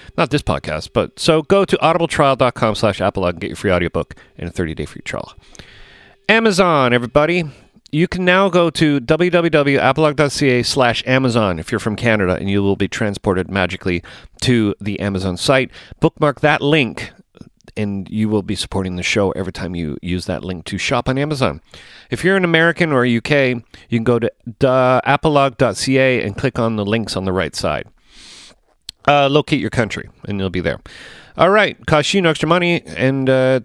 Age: 40-59